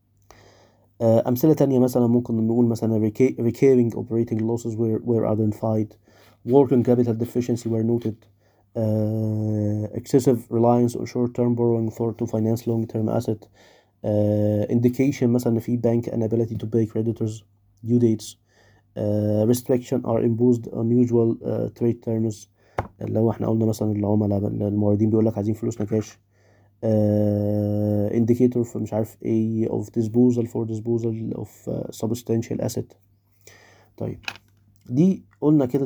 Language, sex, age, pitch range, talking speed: Arabic, male, 20-39, 105-120 Hz, 135 wpm